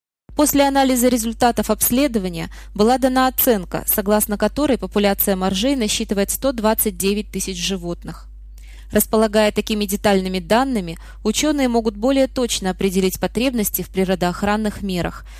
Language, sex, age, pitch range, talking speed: Russian, female, 20-39, 190-230 Hz, 110 wpm